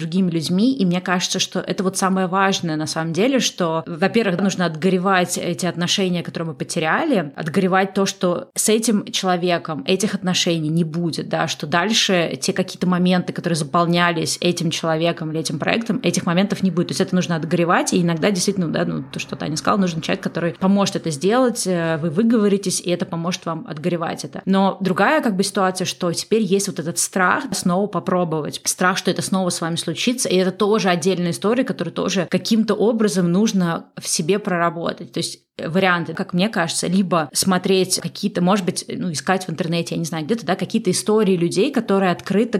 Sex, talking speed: female, 185 wpm